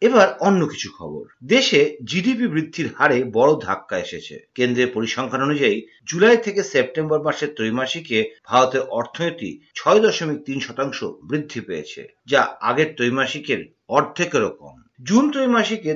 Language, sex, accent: Bengali, male, native